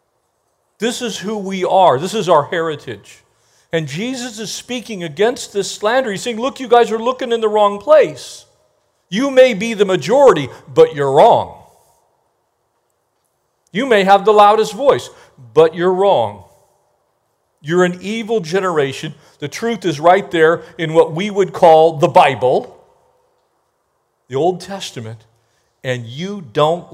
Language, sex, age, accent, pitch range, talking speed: English, male, 50-69, American, 160-235 Hz, 145 wpm